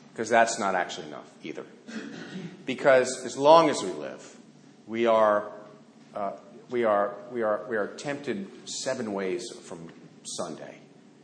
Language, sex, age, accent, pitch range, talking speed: English, male, 50-69, American, 95-115 Hz, 140 wpm